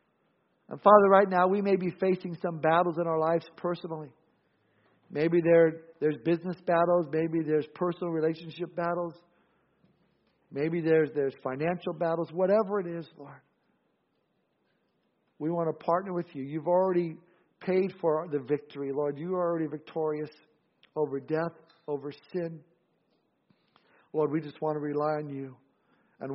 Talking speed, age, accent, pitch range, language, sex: 140 wpm, 50-69, American, 140-170 Hz, English, male